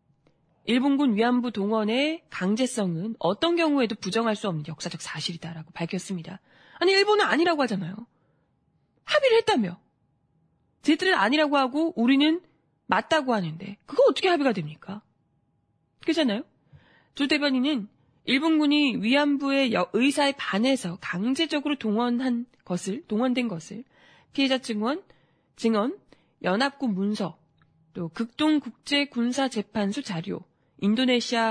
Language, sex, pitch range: Korean, female, 200-305 Hz